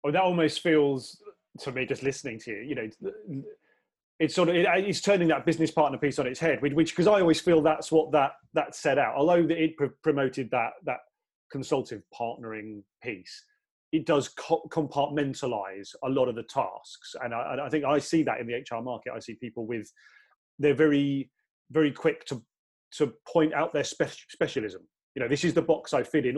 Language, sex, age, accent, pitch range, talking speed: English, male, 30-49, British, 125-165 Hz, 200 wpm